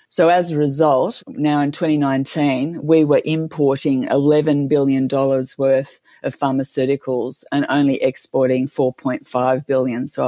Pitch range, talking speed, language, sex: 135-150 Hz, 125 wpm, English, female